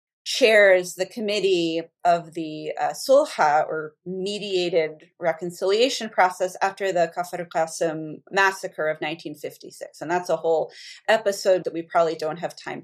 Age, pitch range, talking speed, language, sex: 30-49, 175-220 Hz, 135 wpm, English, female